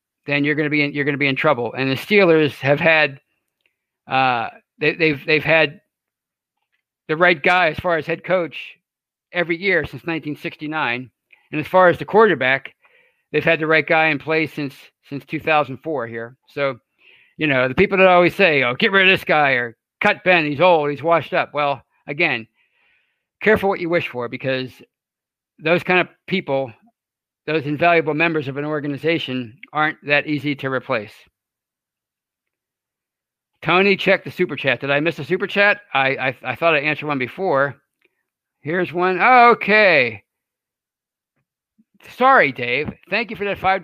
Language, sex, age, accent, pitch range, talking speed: English, male, 50-69, American, 145-180 Hz, 170 wpm